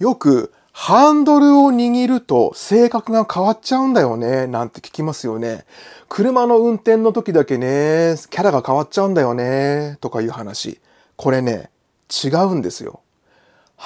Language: Japanese